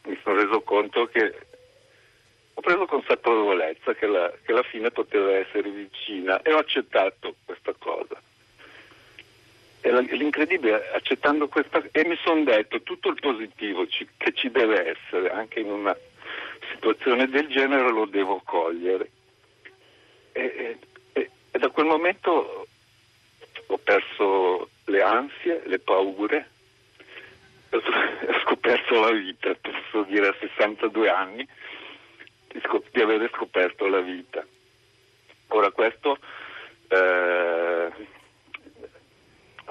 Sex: male